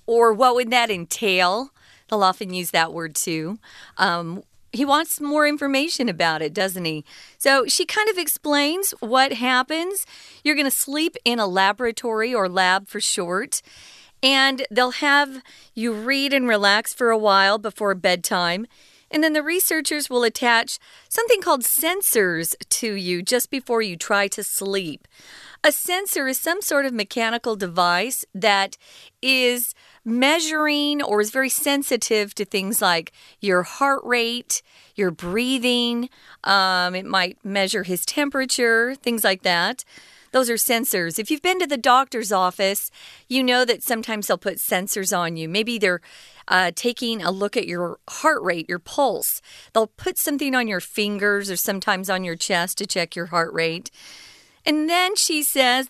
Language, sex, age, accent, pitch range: Chinese, female, 40-59, American, 195-270 Hz